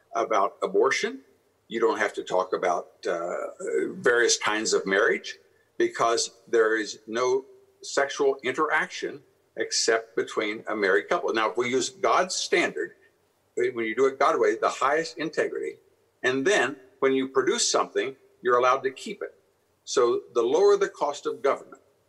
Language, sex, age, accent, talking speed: English, male, 60-79, American, 155 wpm